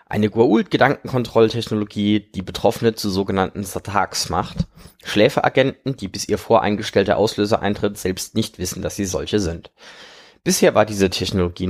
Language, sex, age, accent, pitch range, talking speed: German, male, 20-39, German, 95-115 Hz, 140 wpm